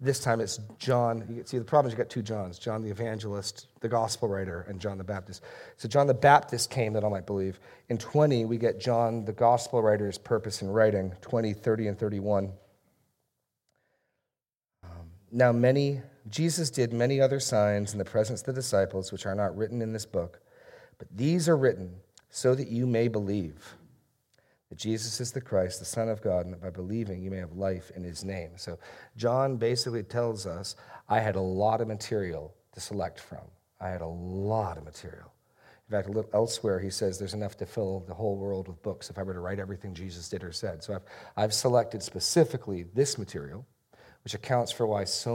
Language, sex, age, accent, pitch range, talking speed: English, male, 40-59, American, 95-120 Hz, 200 wpm